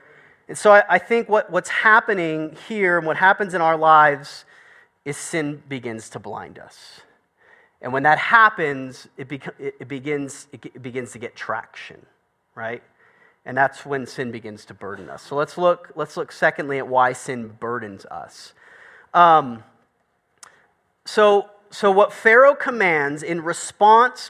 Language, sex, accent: English, male, American